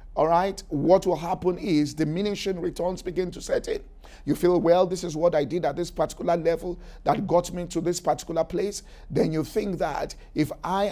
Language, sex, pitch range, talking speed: English, male, 155-185 Hz, 205 wpm